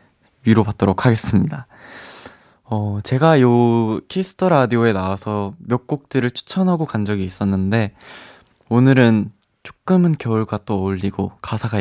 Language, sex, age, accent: Korean, male, 20-39, native